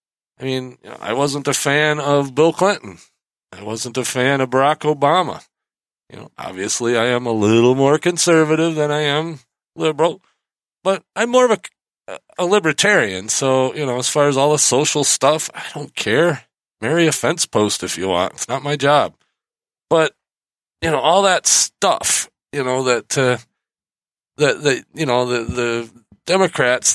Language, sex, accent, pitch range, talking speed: English, male, American, 125-170 Hz, 175 wpm